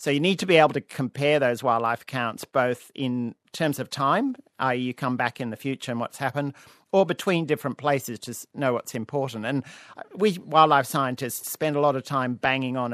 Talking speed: 210 wpm